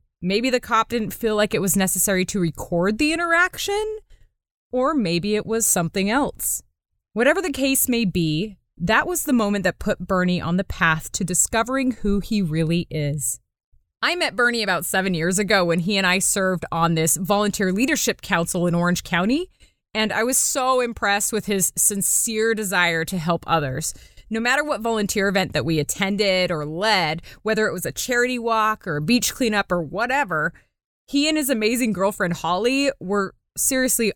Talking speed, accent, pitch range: 180 wpm, American, 180-230 Hz